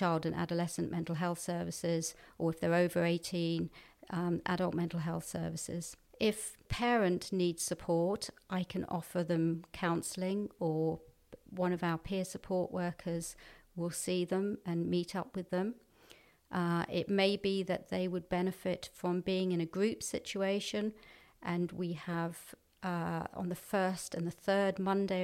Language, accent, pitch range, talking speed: English, British, 175-195 Hz, 155 wpm